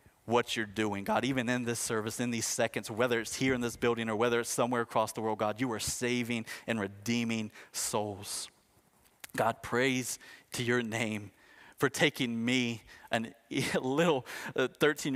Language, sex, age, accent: English, male, 30-49, American